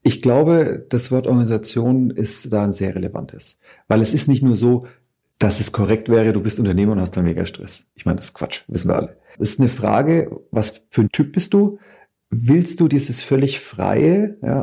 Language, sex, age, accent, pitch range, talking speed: German, male, 50-69, German, 110-140 Hz, 215 wpm